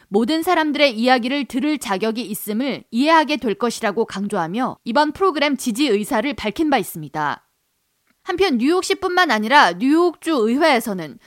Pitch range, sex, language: 230-300 Hz, female, Korean